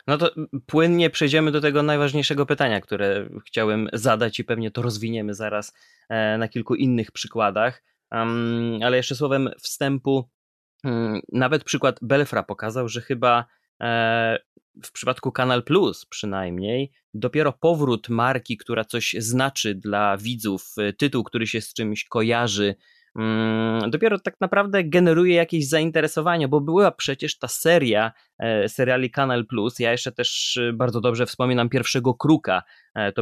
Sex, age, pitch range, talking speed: male, 20-39, 115-150 Hz, 130 wpm